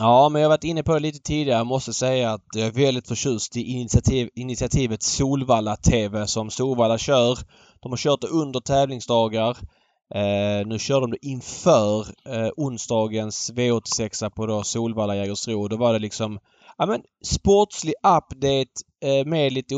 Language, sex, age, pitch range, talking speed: Swedish, male, 20-39, 110-135 Hz, 160 wpm